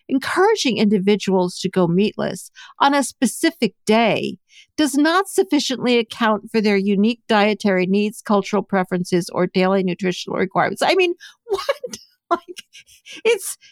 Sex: female